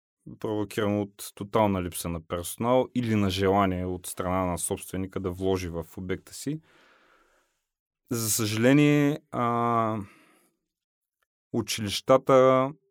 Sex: male